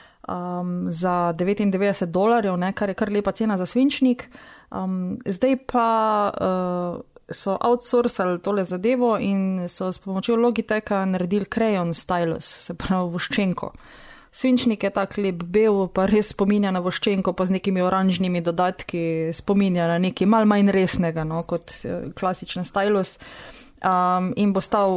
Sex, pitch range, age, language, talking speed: female, 175-210 Hz, 20-39, English, 145 wpm